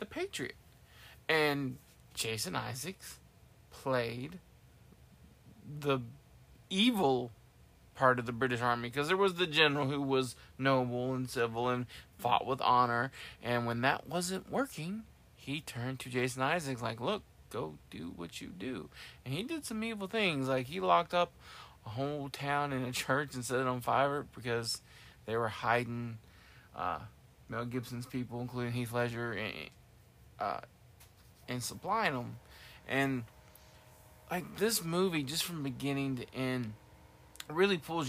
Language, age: English, 20-39